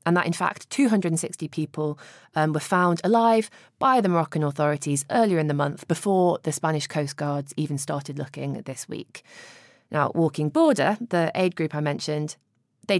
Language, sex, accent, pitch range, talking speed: English, female, British, 150-195 Hz, 175 wpm